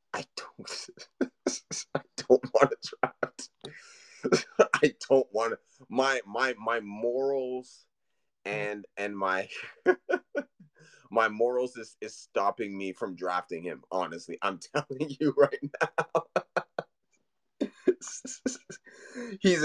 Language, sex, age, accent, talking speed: English, male, 30-49, American, 105 wpm